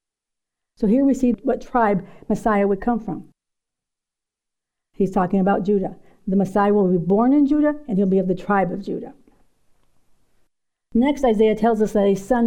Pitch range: 200-250 Hz